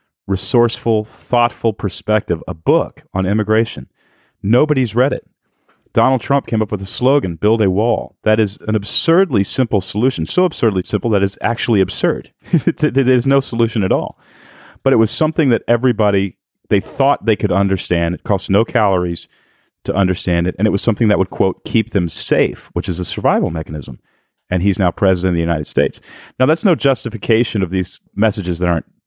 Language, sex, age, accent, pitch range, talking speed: English, male, 40-59, American, 90-120 Hz, 180 wpm